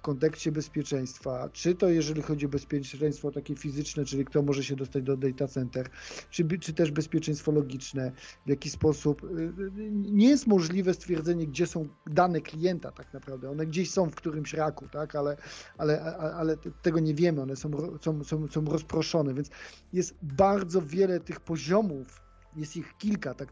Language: Polish